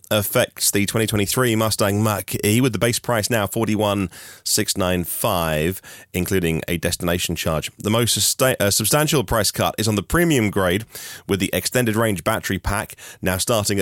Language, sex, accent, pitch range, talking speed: English, male, British, 90-115 Hz, 150 wpm